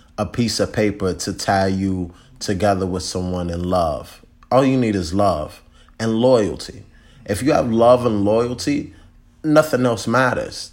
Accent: American